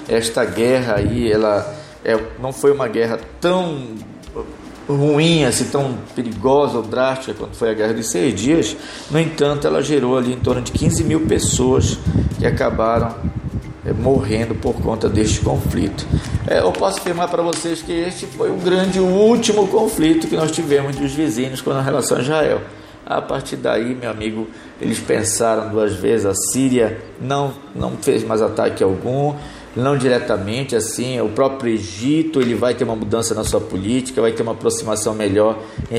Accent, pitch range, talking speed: Brazilian, 115-140 Hz, 175 wpm